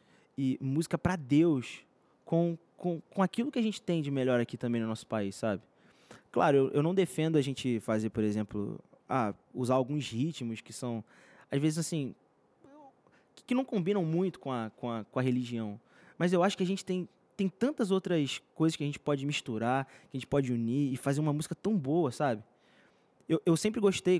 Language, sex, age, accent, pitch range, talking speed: Portuguese, male, 20-39, Brazilian, 125-175 Hz, 205 wpm